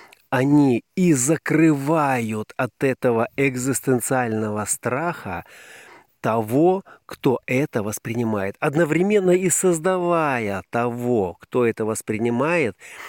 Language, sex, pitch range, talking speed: Russian, male, 110-145 Hz, 85 wpm